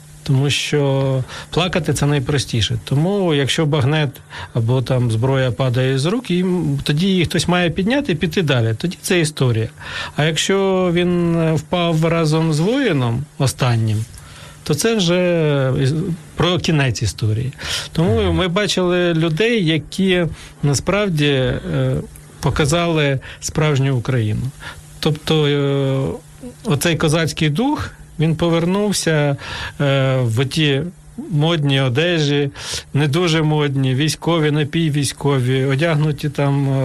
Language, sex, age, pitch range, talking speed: Ukrainian, male, 40-59, 135-165 Hz, 110 wpm